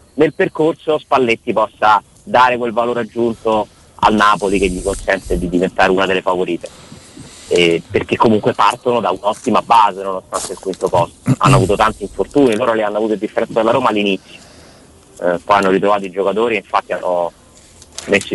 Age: 30-49